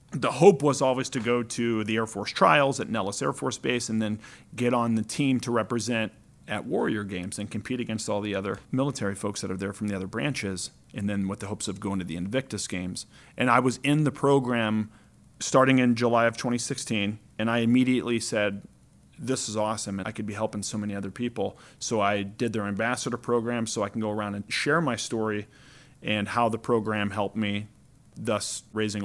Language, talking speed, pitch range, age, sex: English, 215 wpm, 105-125 Hz, 40-59, male